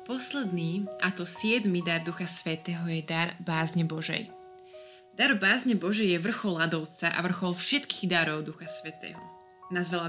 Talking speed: 145 wpm